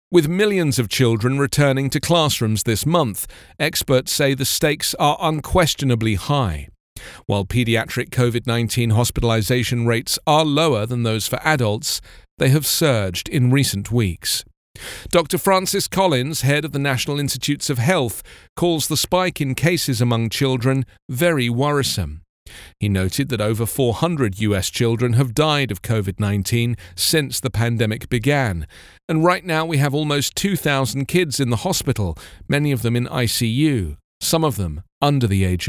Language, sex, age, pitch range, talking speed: English, male, 40-59, 110-145 Hz, 150 wpm